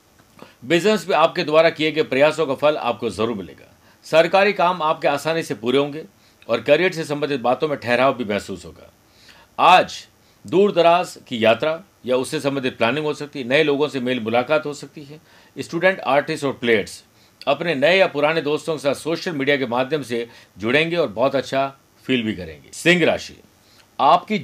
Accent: native